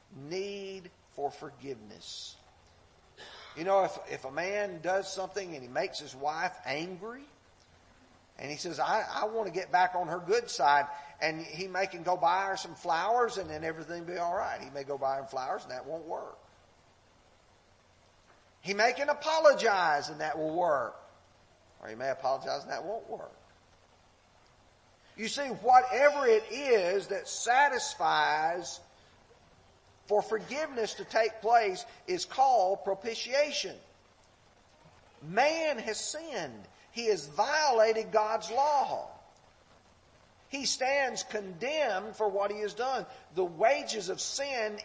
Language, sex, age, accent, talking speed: English, male, 50-69, American, 140 wpm